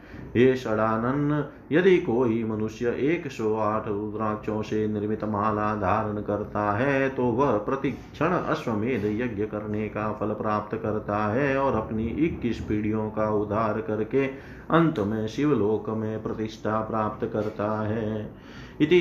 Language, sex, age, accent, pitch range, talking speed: Hindi, male, 30-49, native, 110-135 Hz, 125 wpm